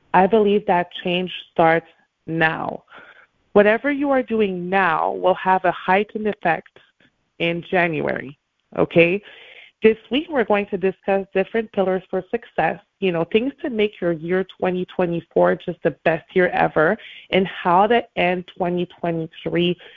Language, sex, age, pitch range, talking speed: English, female, 30-49, 175-225 Hz, 140 wpm